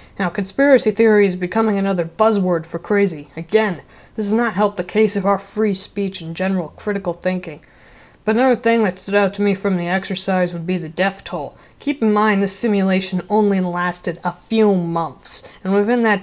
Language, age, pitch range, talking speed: English, 20-39, 175-210 Hz, 195 wpm